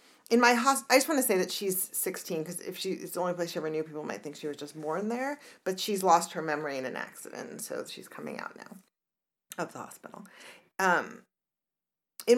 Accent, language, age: American, English, 40-59